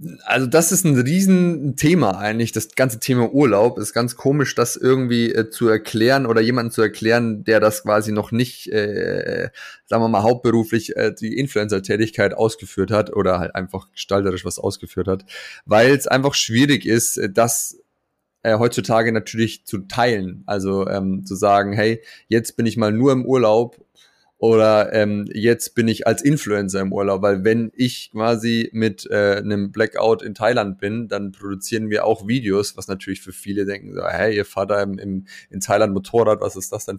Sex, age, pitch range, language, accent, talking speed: male, 30-49, 100-120 Hz, German, German, 180 wpm